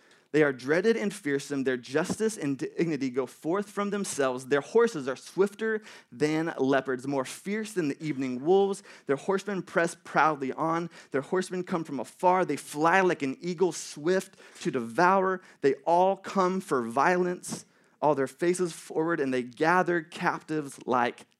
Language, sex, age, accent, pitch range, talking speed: English, male, 30-49, American, 155-210 Hz, 160 wpm